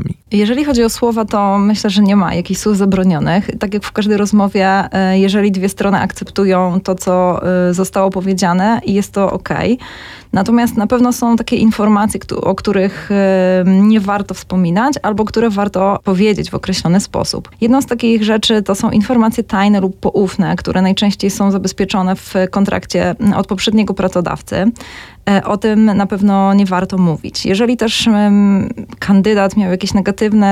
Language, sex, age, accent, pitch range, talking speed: Polish, female, 20-39, native, 190-215 Hz, 155 wpm